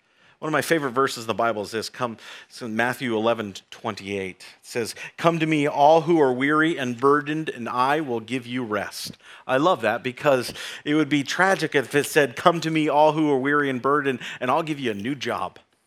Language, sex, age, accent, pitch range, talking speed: English, male, 40-59, American, 125-170 Hz, 225 wpm